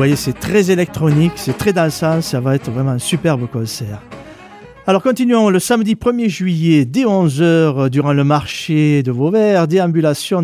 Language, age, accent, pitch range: French, 40-59, French, 130-170 Hz